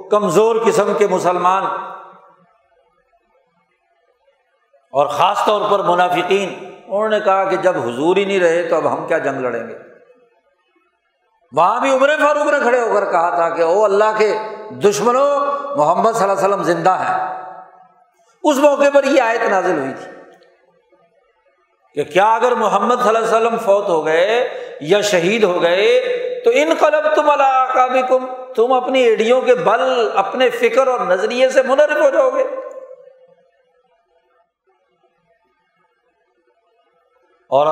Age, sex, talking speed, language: 60-79, male, 140 wpm, Urdu